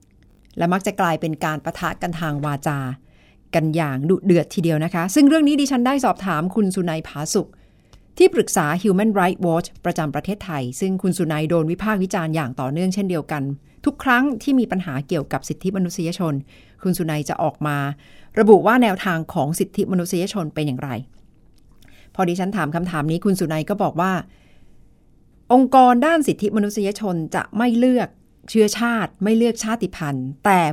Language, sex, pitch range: Thai, female, 160-215 Hz